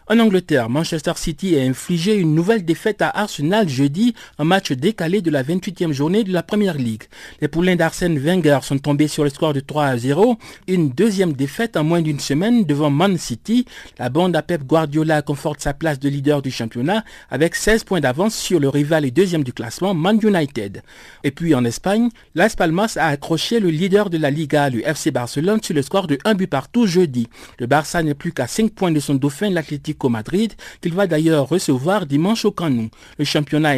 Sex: male